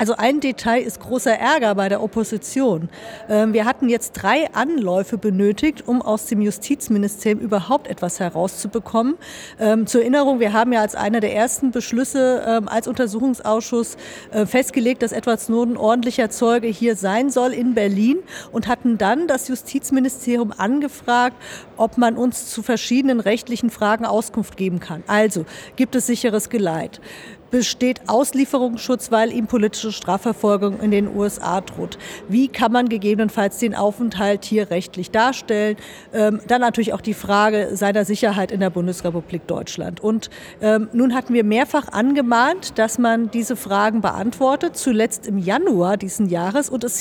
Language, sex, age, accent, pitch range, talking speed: German, female, 50-69, German, 210-245 Hz, 150 wpm